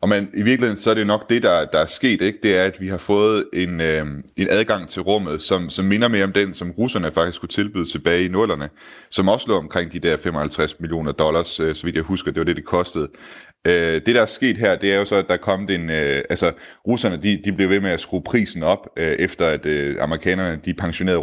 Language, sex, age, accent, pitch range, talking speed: Danish, male, 30-49, native, 80-95 Hz, 265 wpm